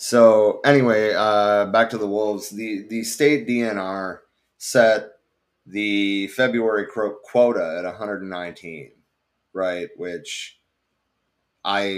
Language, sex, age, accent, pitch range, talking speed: English, male, 30-49, American, 90-110 Hz, 100 wpm